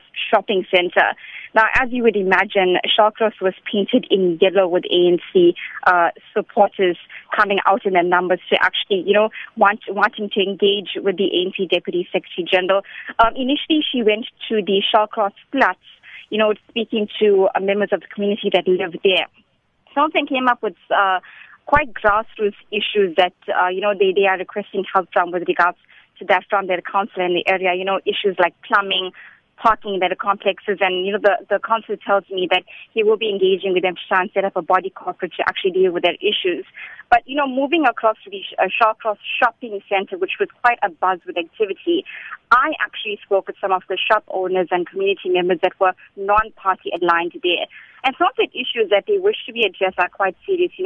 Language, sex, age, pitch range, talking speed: English, female, 20-39, 185-235 Hz, 200 wpm